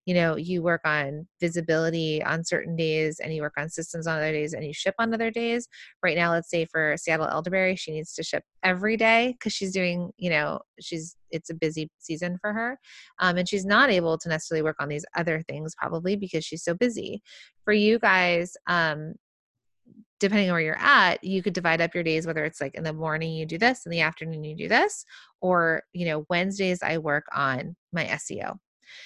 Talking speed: 215 wpm